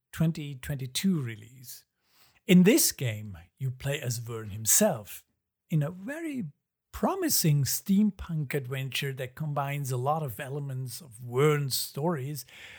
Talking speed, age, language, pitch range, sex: 120 wpm, 50-69, English, 125-160 Hz, male